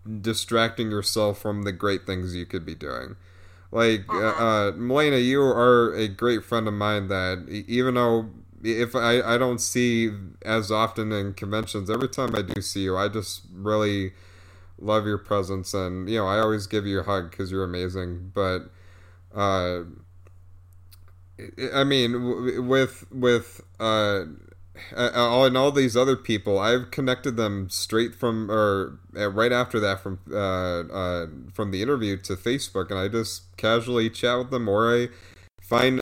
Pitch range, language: 95-120 Hz, English